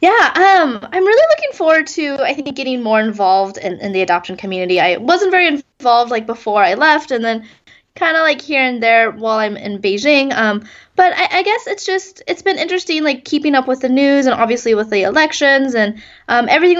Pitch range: 205-295 Hz